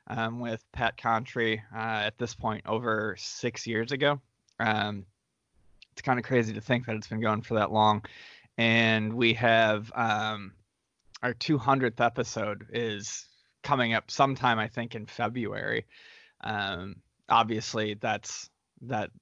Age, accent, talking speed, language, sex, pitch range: 20-39, American, 140 wpm, English, male, 110-125 Hz